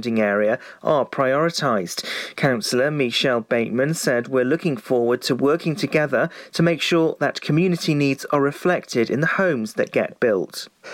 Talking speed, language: 150 wpm, English